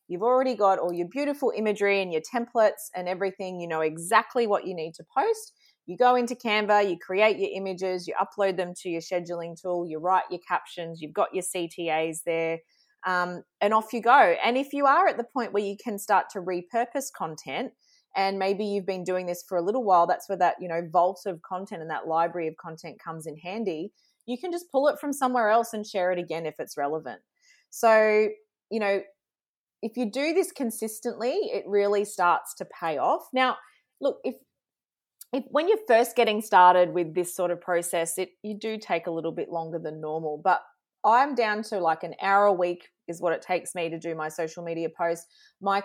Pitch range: 175-225 Hz